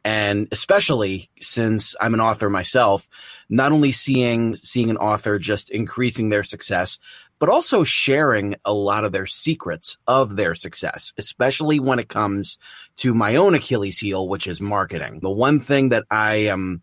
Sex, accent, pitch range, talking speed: male, American, 105-130 Hz, 165 wpm